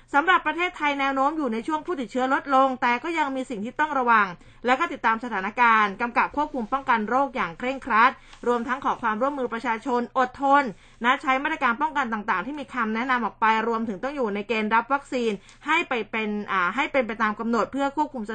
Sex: female